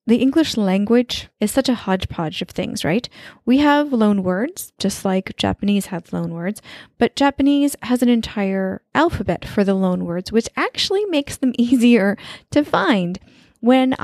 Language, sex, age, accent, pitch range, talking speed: English, female, 10-29, American, 185-235 Hz, 160 wpm